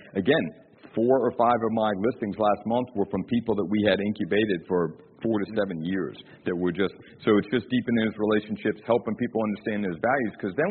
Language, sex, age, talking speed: English, male, 50-69, 205 wpm